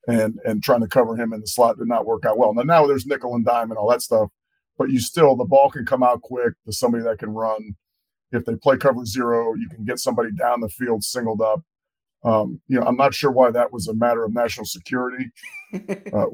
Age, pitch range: 30-49, 110-130 Hz